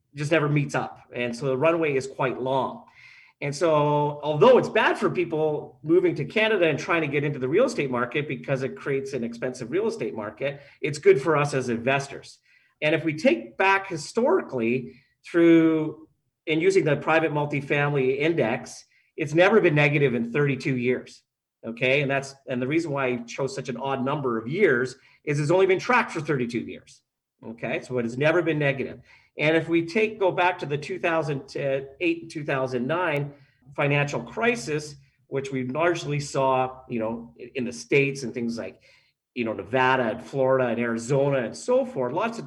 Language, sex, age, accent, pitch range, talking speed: English, male, 40-59, American, 130-160 Hz, 185 wpm